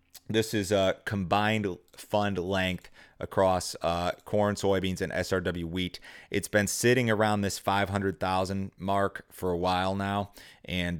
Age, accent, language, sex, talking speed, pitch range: 30-49, American, English, male, 135 wpm, 85-100 Hz